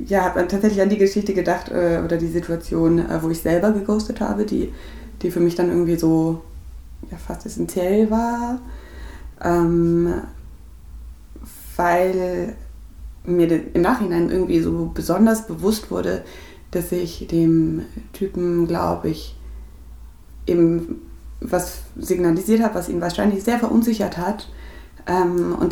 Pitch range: 165-195 Hz